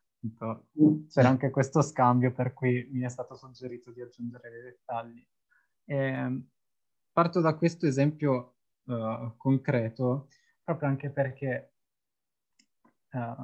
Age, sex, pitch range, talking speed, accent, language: 20-39, male, 120-135 Hz, 110 wpm, native, Italian